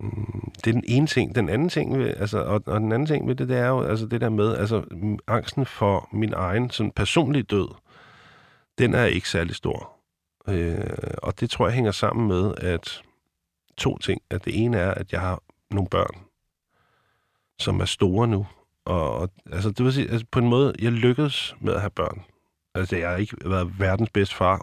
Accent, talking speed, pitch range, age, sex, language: native, 205 wpm, 95-120 Hz, 50-69, male, Danish